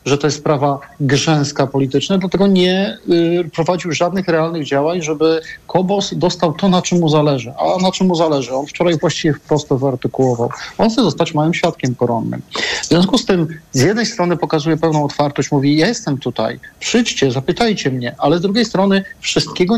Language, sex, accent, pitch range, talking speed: Polish, male, native, 140-175 Hz, 175 wpm